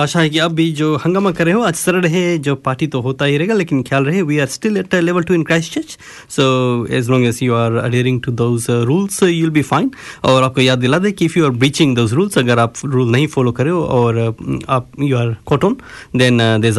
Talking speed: 80 wpm